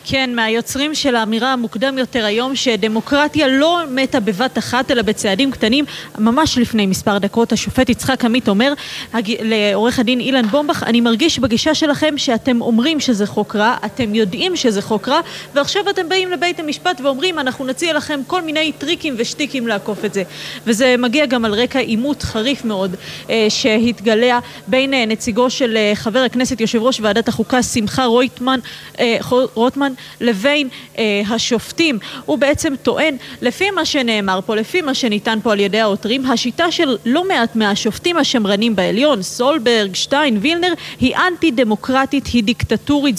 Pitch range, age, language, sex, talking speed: 220-280 Hz, 20-39, Hebrew, female, 155 wpm